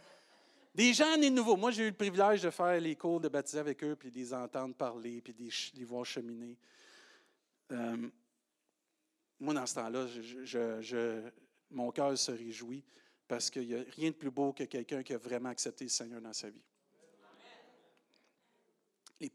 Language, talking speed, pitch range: French, 175 wpm, 125-170 Hz